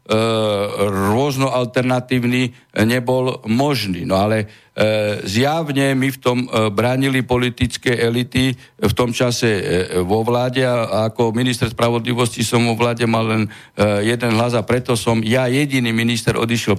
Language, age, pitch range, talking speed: Slovak, 60-79, 110-125 Hz, 130 wpm